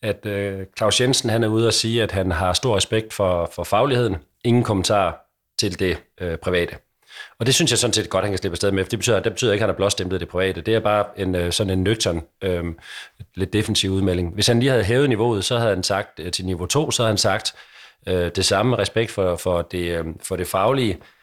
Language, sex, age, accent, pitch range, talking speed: Danish, male, 40-59, native, 90-110 Hz, 245 wpm